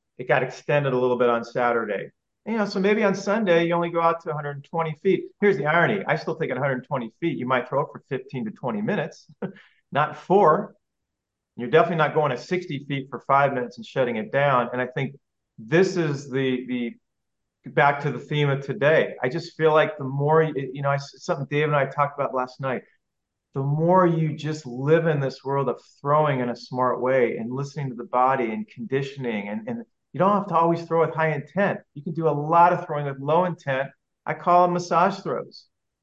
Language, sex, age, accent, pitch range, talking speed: English, male, 40-59, American, 135-175 Hz, 220 wpm